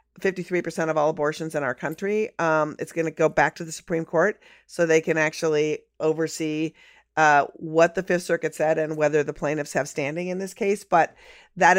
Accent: American